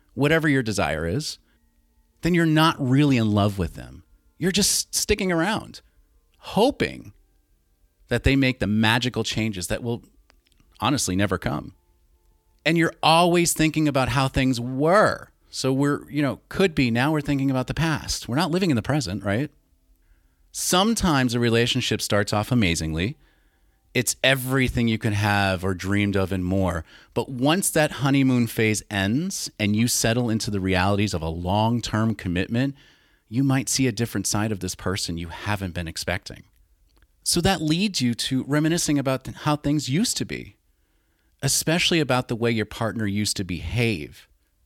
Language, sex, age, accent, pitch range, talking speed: English, male, 30-49, American, 95-140 Hz, 165 wpm